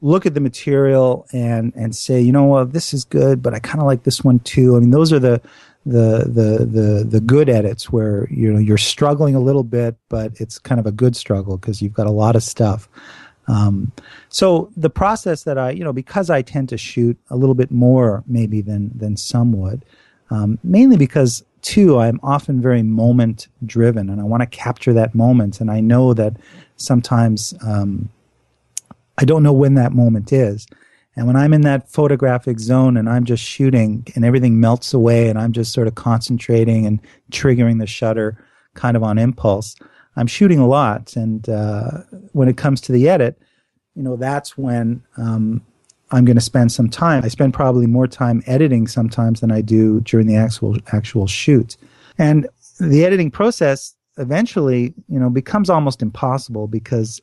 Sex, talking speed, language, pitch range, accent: male, 195 wpm, English, 110-135 Hz, American